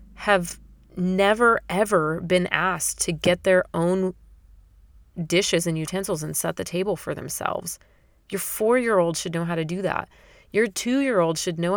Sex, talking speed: female, 155 wpm